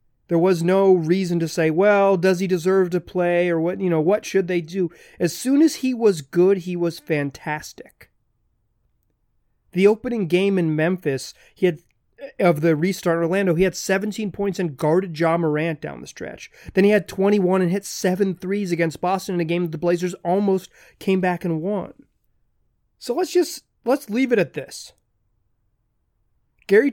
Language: English